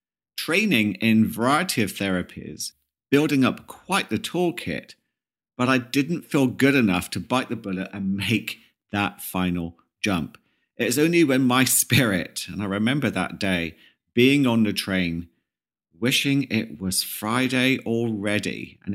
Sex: male